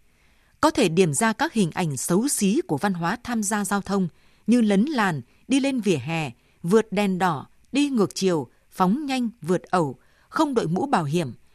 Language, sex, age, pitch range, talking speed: Vietnamese, female, 20-39, 170-230 Hz, 195 wpm